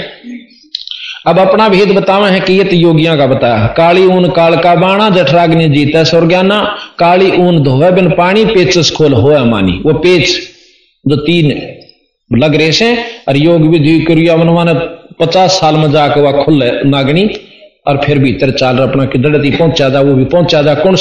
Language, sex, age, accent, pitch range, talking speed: Hindi, male, 50-69, native, 145-195 Hz, 155 wpm